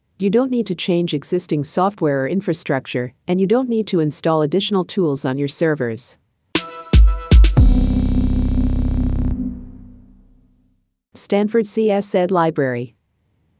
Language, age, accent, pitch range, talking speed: English, 50-69, American, 135-180 Hz, 100 wpm